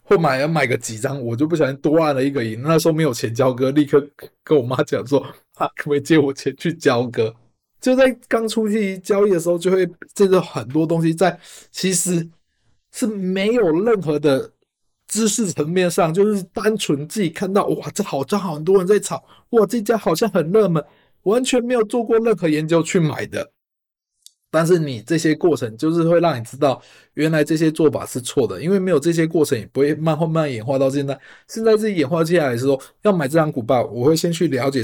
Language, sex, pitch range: Chinese, male, 140-190 Hz